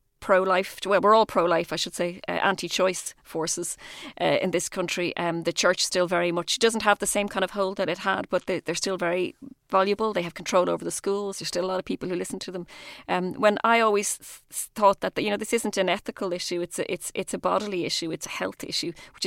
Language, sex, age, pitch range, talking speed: English, female, 30-49, 175-215 Hz, 245 wpm